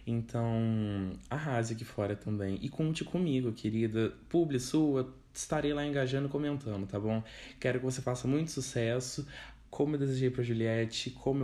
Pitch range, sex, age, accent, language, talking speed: 105-130 Hz, male, 20-39, Brazilian, Portuguese, 155 wpm